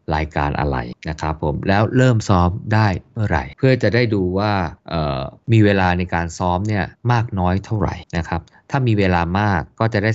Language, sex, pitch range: Thai, male, 80-100 Hz